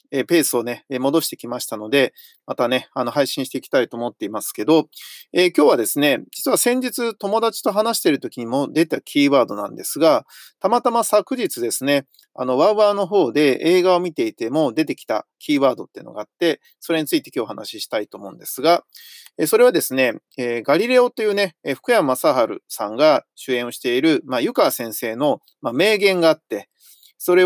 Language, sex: Japanese, male